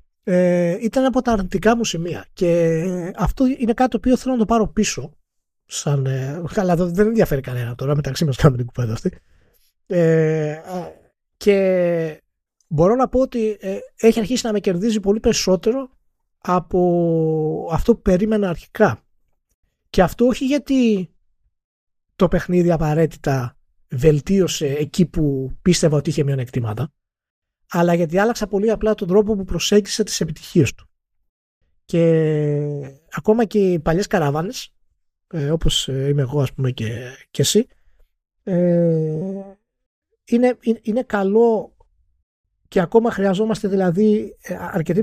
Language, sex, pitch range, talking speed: Greek, male, 150-210 Hz, 130 wpm